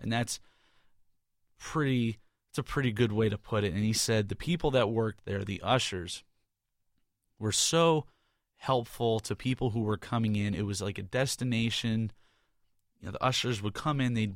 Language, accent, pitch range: English, American, 105-120 Hz